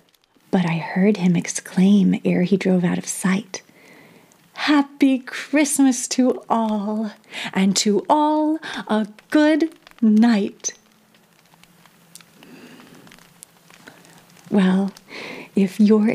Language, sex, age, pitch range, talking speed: English, female, 30-49, 190-230 Hz, 90 wpm